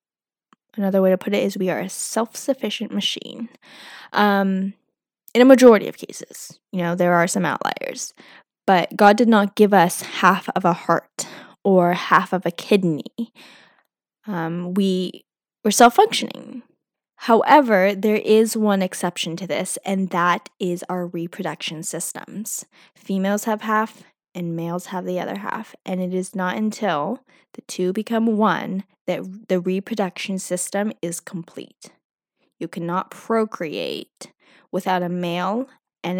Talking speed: 145 wpm